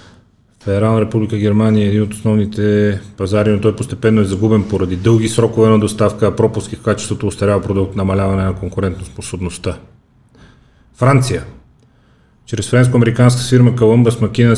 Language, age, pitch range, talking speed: Bulgarian, 30-49, 100-110 Hz, 130 wpm